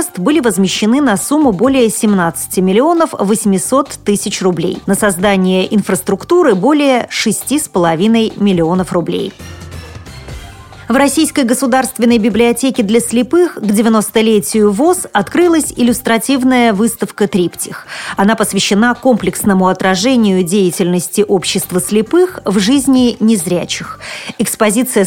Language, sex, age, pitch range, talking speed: Russian, female, 30-49, 190-255 Hz, 100 wpm